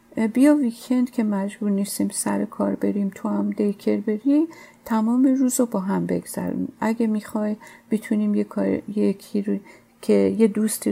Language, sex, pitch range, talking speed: Persian, female, 200-265 Hz, 145 wpm